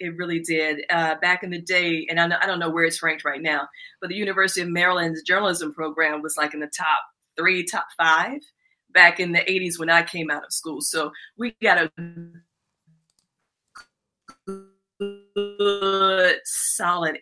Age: 40-59